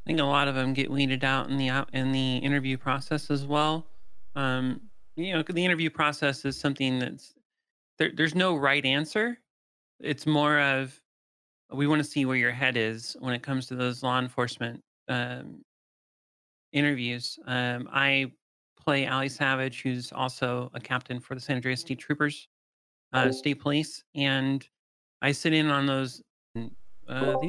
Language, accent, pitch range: English, American, 125-145 Hz